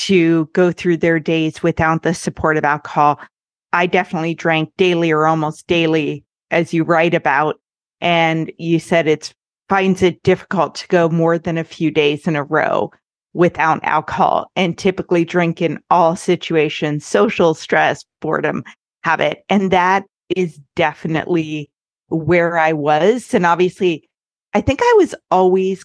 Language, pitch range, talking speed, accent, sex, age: English, 160-185 Hz, 150 wpm, American, female, 40-59